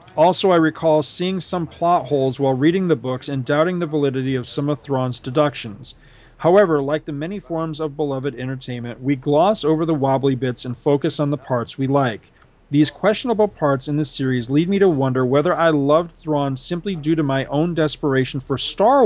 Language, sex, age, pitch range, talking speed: English, male, 40-59, 130-165 Hz, 200 wpm